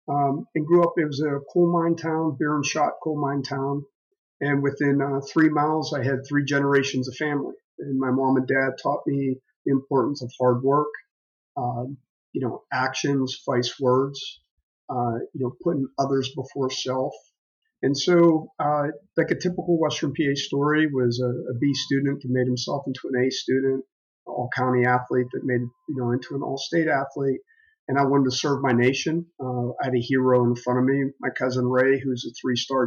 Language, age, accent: English, 50-69, American